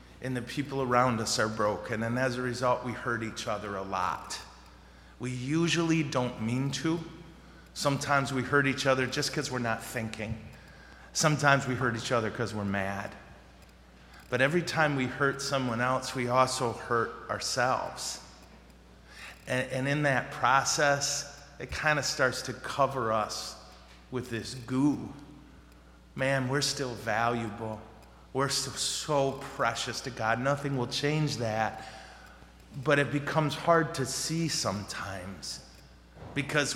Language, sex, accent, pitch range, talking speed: English, male, American, 110-135 Hz, 145 wpm